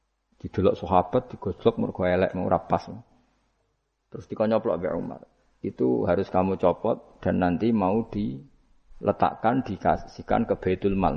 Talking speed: 95 wpm